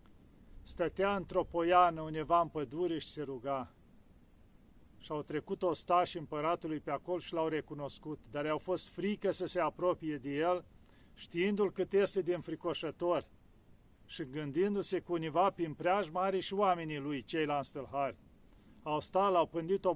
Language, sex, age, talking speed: Romanian, male, 40-59, 155 wpm